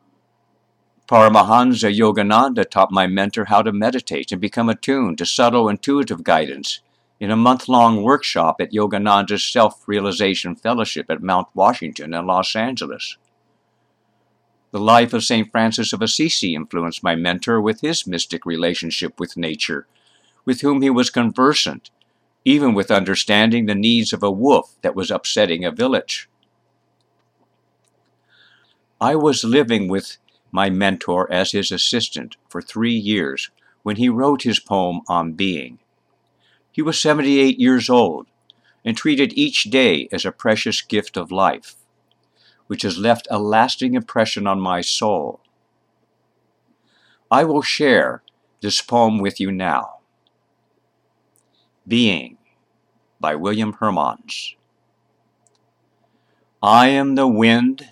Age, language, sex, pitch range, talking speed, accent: 60-79, English, male, 100-125 Hz, 125 wpm, American